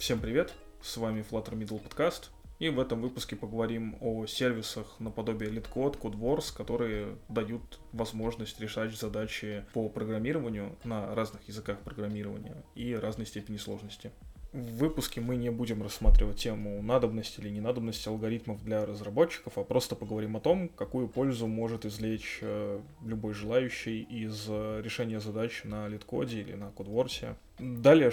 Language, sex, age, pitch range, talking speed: Russian, male, 20-39, 105-120 Hz, 140 wpm